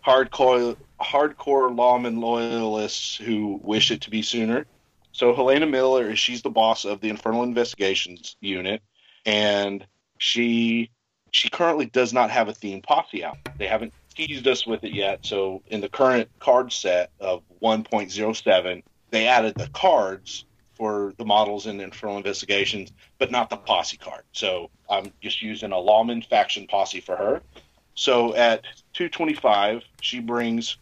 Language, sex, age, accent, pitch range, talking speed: English, male, 40-59, American, 105-125 Hz, 150 wpm